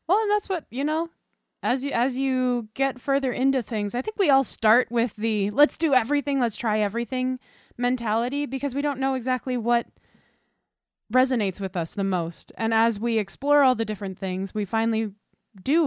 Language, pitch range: English, 195-255 Hz